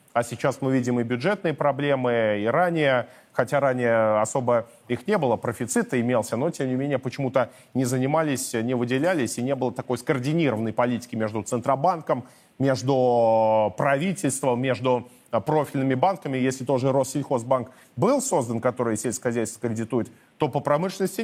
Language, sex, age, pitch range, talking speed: Russian, male, 30-49, 120-140 Hz, 140 wpm